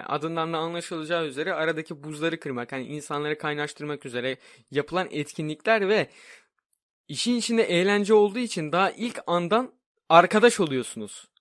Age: 20-39